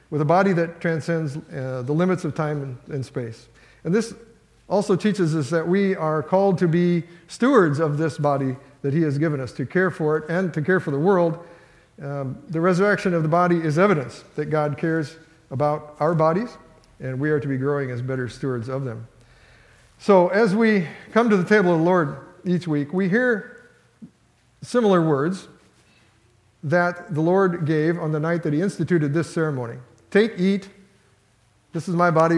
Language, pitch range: English, 140-175 Hz